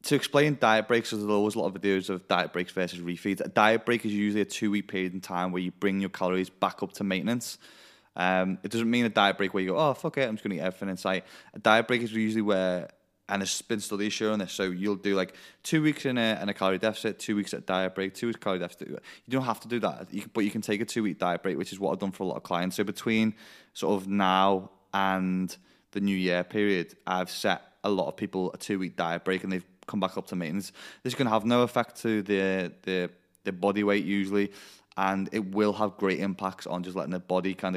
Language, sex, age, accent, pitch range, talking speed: English, male, 20-39, British, 95-110 Hz, 265 wpm